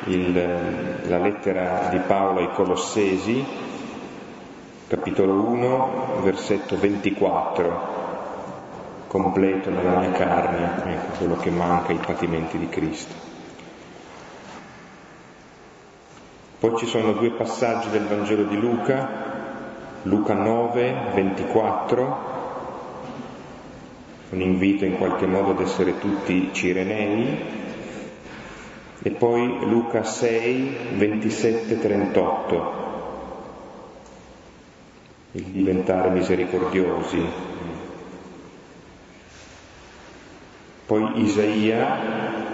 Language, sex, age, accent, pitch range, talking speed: Italian, male, 30-49, native, 90-110 Hz, 75 wpm